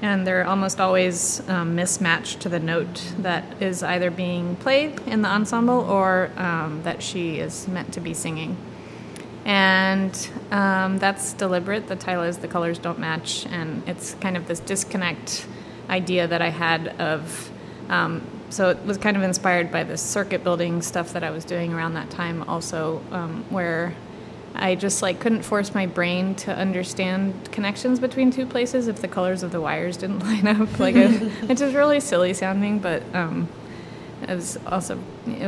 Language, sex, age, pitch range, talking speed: English, female, 20-39, 170-200 Hz, 175 wpm